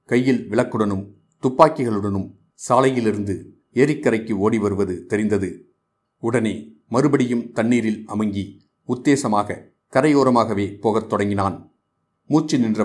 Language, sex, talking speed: Tamil, male, 85 wpm